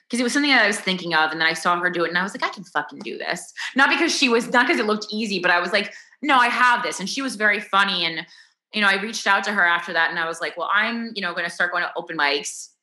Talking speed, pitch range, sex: 335 wpm, 160-215 Hz, female